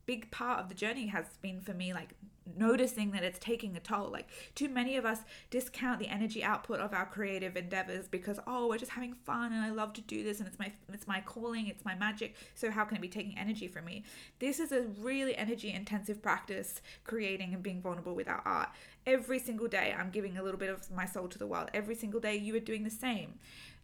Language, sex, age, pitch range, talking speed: English, female, 20-39, 190-225 Hz, 240 wpm